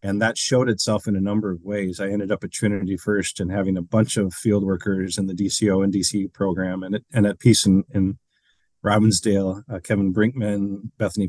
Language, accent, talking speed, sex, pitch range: English, American, 200 wpm, male, 95-115 Hz